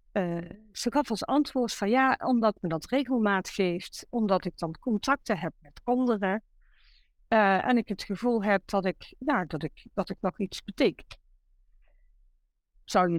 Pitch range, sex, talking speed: 185-245 Hz, female, 170 wpm